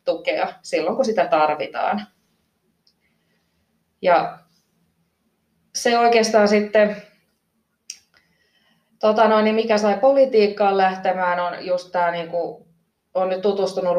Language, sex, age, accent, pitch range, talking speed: Finnish, female, 20-39, native, 165-190 Hz, 100 wpm